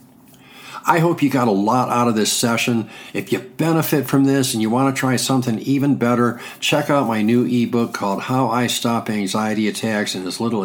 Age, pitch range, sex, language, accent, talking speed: 50-69, 120-140 Hz, male, English, American, 210 wpm